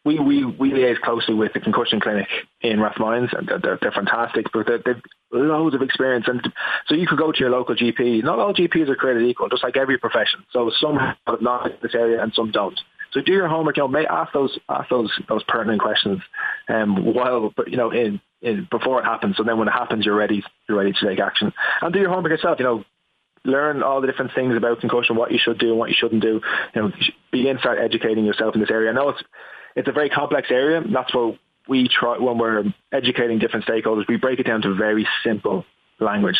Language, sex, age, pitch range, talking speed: English, male, 20-39, 110-130 Hz, 235 wpm